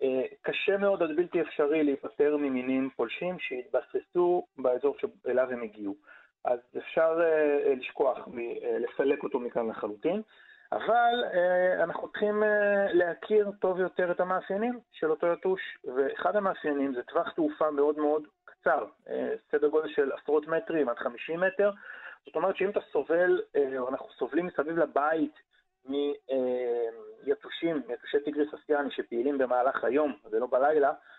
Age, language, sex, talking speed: 30-49, Hebrew, male, 125 wpm